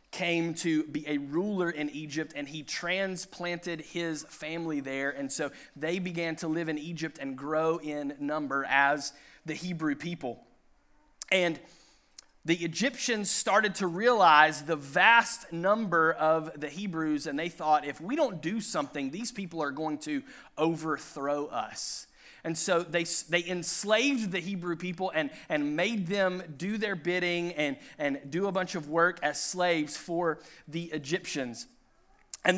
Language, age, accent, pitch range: English, 30-49, American, 155-190 Hz